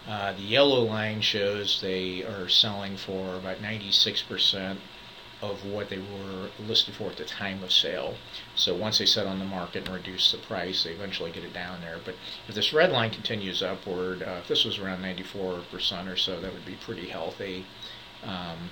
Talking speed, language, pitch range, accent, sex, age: 190 wpm, English, 90-100 Hz, American, male, 50-69